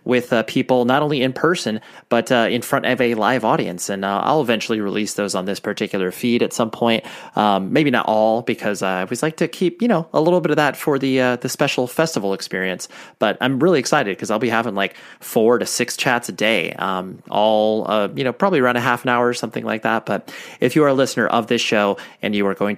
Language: English